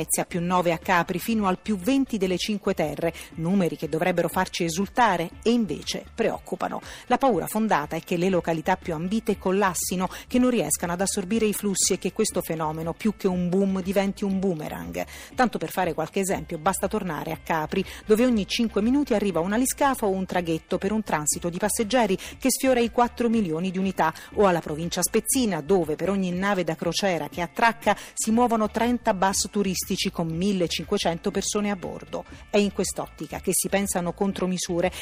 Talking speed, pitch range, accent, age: 185 wpm, 170-210 Hz, native, 40-59